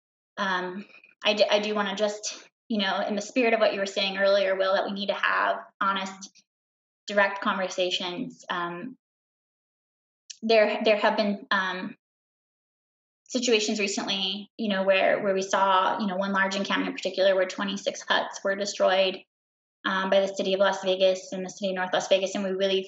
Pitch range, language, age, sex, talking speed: 190-220 Hz, English, 20-39, female, 190 wpm